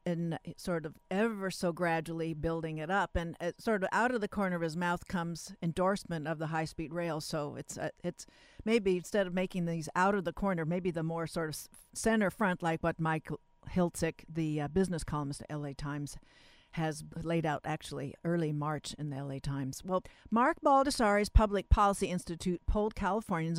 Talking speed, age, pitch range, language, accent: 190 wpm, 50-69, 160-195 Hz, English, American